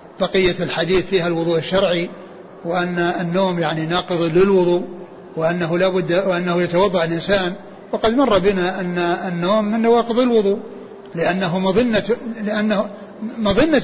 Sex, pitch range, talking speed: male, 170-205 Hz, 115 wpm